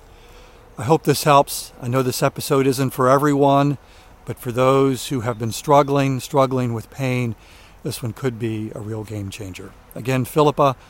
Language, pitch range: English, 110-145 Hz